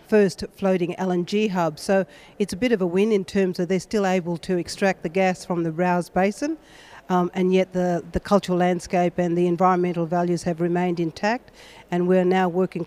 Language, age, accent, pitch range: English, 50-69, Australian, 175-190 Hz